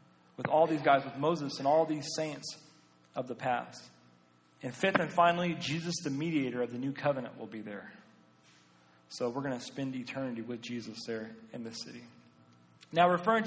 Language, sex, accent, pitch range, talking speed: English, male, American, 125-160 Hz, 185 wpm